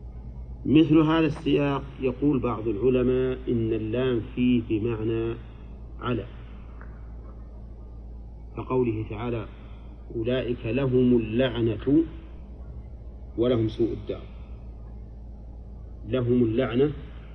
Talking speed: 75 wpm